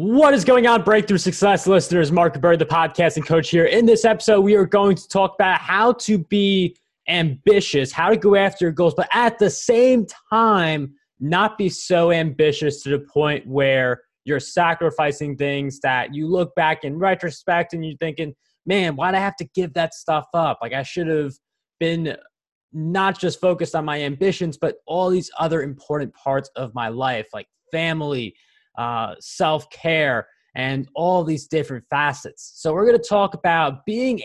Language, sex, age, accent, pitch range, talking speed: English, male, 20-39, American, 150-195 Hz, 180 wpm